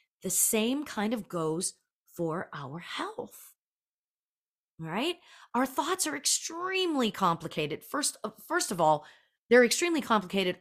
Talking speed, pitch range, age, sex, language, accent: 120 wpm, 180-270 Hz, 30-49, female, English, American